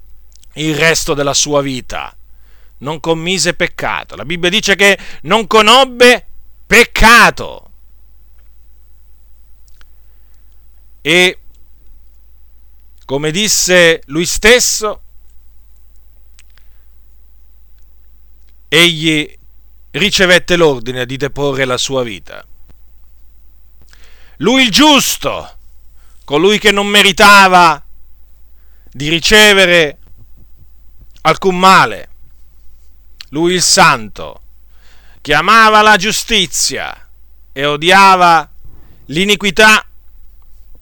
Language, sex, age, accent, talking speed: Italian, male, 50-69, native, 70 wpm